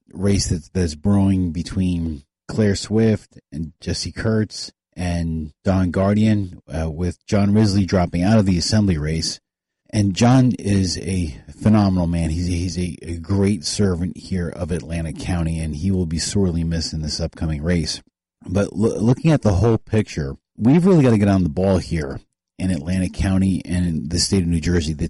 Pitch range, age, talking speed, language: 85-100 Hz, 30-49, 180 wpm, English